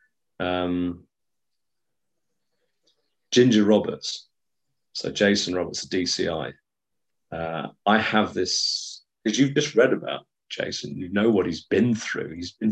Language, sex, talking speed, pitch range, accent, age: English, male, 125 wpm, 90-125 Hz, British, 40-59